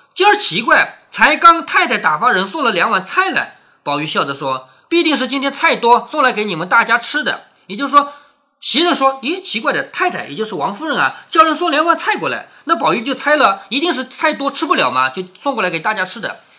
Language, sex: Chinese, male